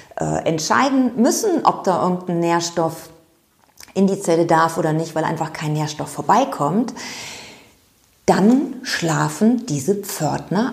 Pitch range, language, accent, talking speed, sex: 170-225 Hz, German, German, 120 wpm, female